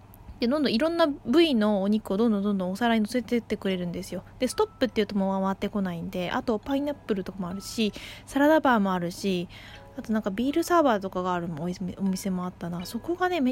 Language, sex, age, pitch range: Japanese, female, 20-39, 185-260 Hz